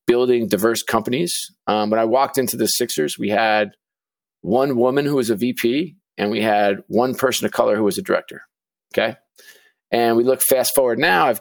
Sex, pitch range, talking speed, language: male, 105-125 Hz, 195 wpm, English